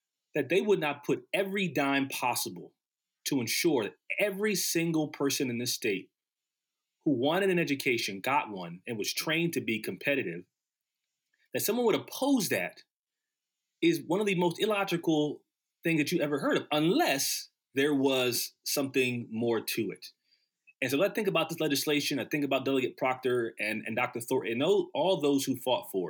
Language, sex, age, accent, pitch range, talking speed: English, male, 30-49, American, 120-185 Hz, 170 wpm